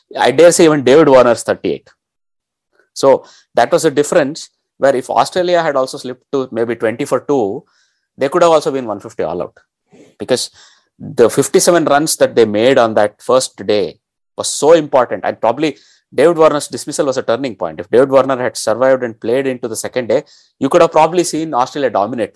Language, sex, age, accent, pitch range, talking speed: English, male, 30-49, Indian, 115-155 Hz, 195 wpm